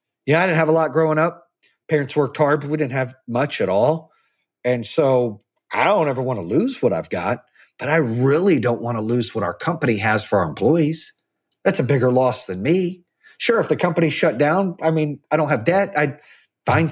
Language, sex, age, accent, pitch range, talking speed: English, male, 40-59, American, 130-185 Hz, 225 wpm